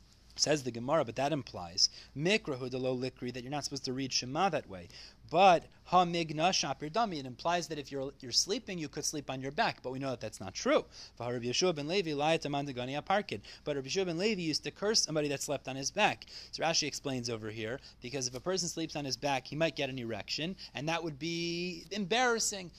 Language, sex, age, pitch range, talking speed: English, male, 30-49, 135-185 Hz, 190 wpm